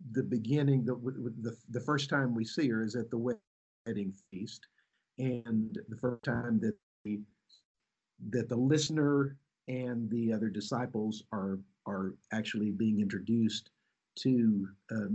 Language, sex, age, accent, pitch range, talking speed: English, male, 50-69, American, 110-140 Hz, 140 wpm